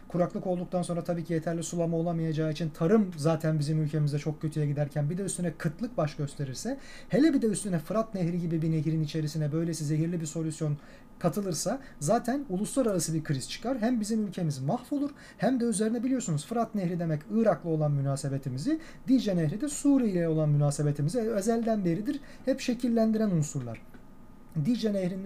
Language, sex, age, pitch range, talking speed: Turkish, male, 40-59, 160-225 Hz, 165 wpm